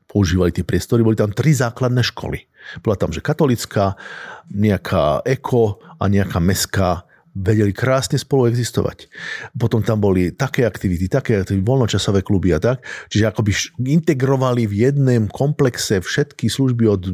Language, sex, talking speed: Slovak, male, 145 wpm